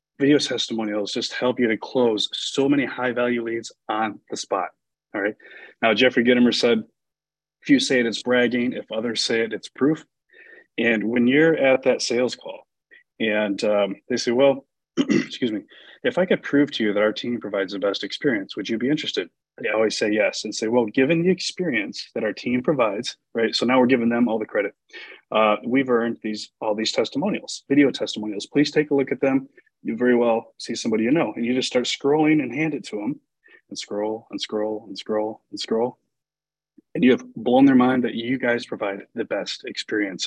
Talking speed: 205 wpm